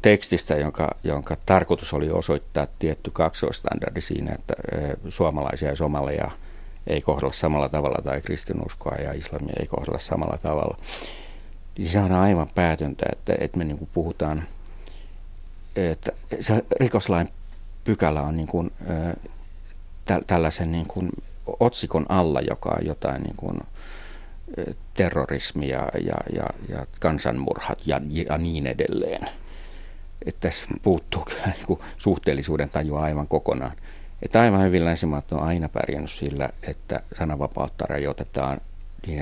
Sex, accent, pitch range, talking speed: male, native, 75-85 Hz, 125 wpm